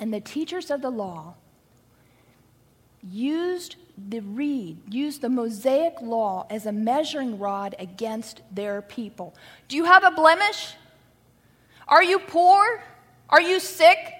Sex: female